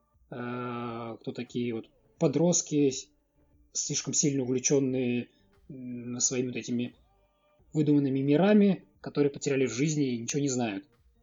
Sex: male